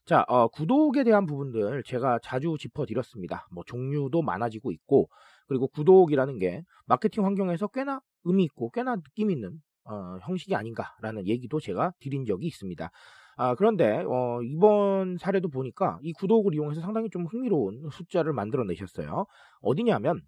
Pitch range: 125-210 Hz